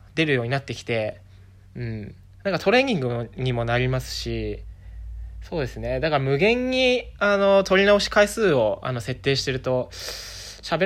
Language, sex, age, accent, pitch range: Japanese, male, 20-39, native, 115-165 Hz